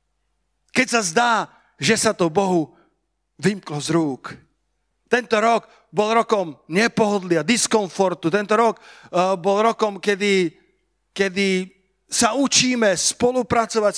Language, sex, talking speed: Slovak, male, 110 wpm